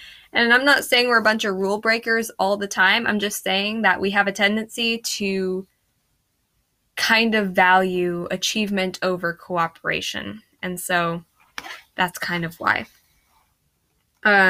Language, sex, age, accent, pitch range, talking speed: English, female, 10-29, American, 180-215 Hz, 145 wpm